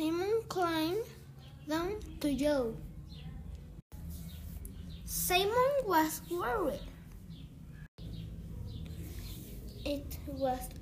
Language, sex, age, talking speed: English, female, 20-39, 55 wpm